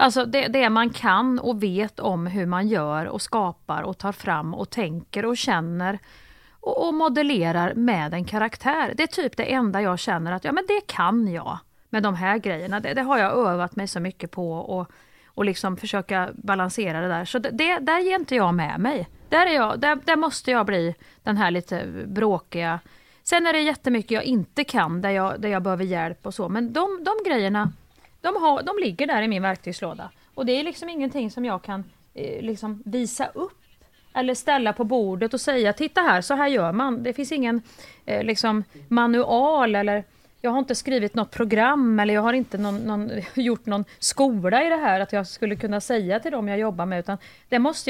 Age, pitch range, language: 30-49, 190-265 Hz, Swedish